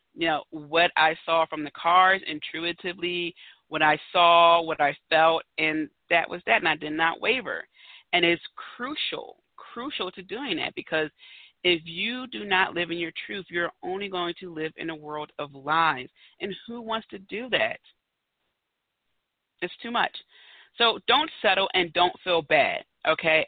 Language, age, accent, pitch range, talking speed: English, 40-59, American, 150-180 Hz, 170 wpm